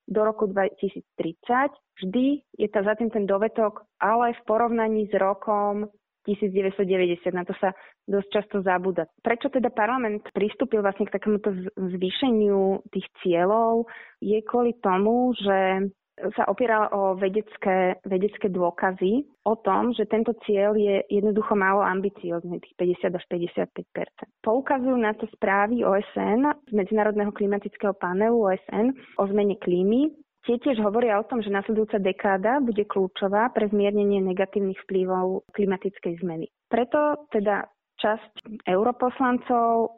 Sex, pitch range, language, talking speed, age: female, 195-225 Hz, Slovak, 130 wpm, 20-39